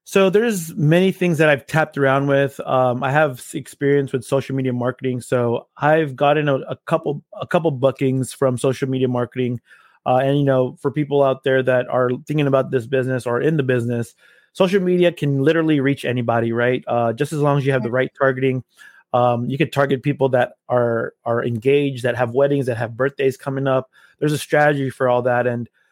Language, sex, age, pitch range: English, male, 20-39, 130-155 Hz